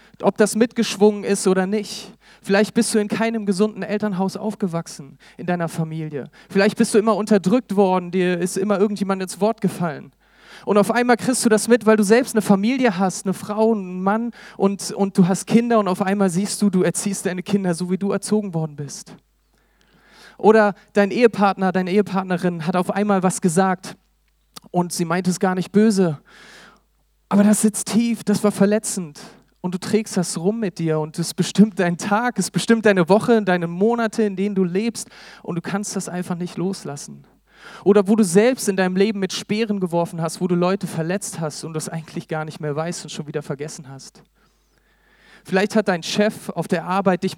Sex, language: male, German